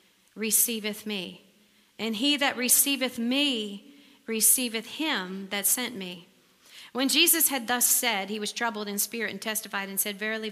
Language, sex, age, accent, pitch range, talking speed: English, female, 40-59, American, 200-245 Hz, 155 wpm